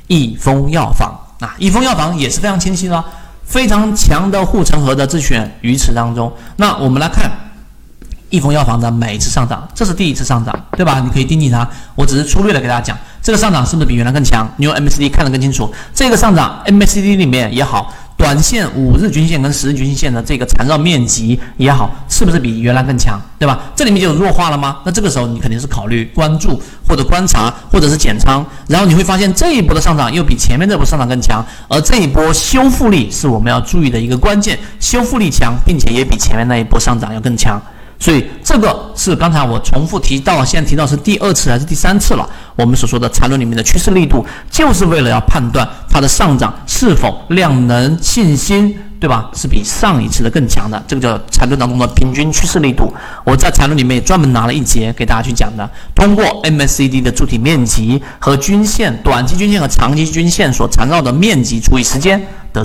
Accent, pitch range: native, 120-175 Hz